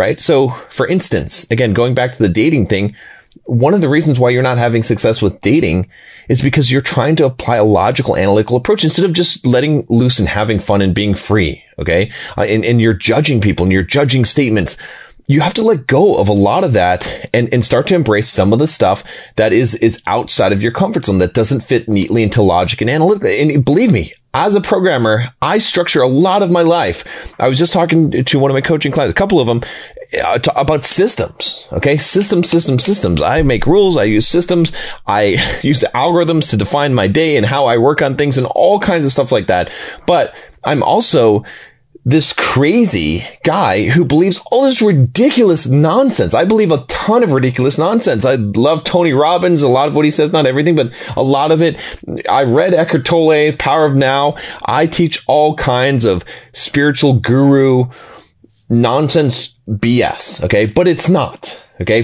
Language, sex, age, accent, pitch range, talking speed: English, male, 30-49, American, 115-165 Hz, 200 wpm